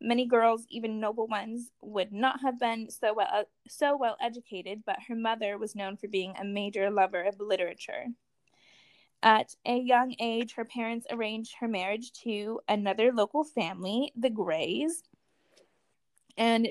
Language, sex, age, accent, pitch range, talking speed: English, female, 10-29, American, 205-240 Hz, 150 wpm